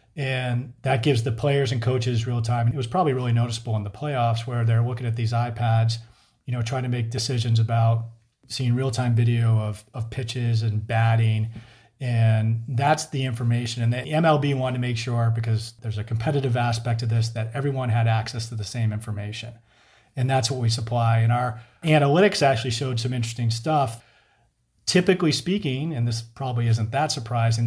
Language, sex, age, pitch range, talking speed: English, male, 40-59, 115-130 Hz, 185 wpm